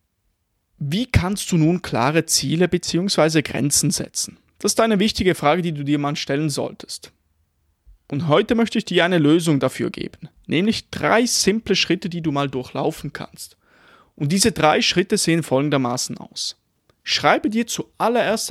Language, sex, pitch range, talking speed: German, male, 145-200 Hz, 155 wpm